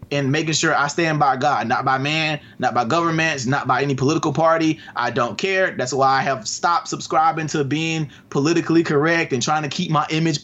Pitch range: 155-220 Hz